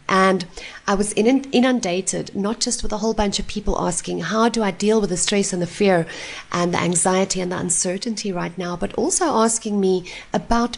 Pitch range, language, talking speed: 190-235 Hz, English, 200 wpm